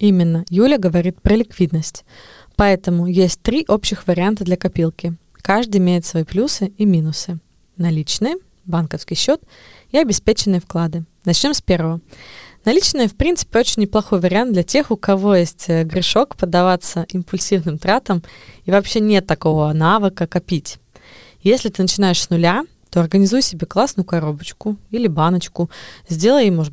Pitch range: 170-205 Hz